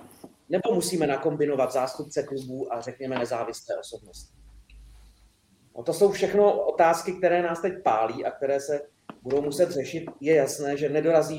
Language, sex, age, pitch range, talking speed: Czech, male, 30-49, 130-160 Hz, 150 wpm